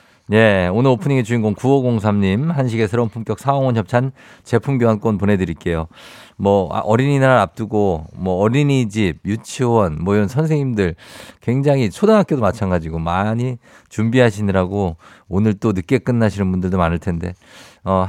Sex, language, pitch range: male, Korean, 95-130 Hz